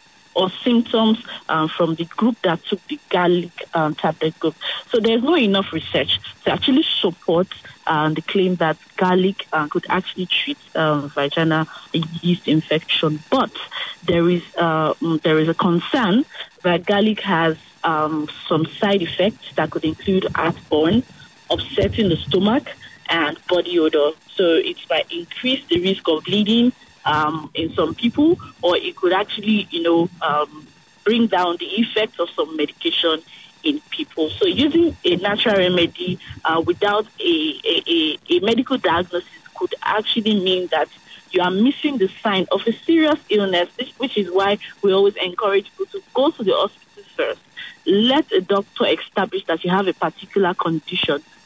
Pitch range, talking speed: 165-235 Hz, 160 wpm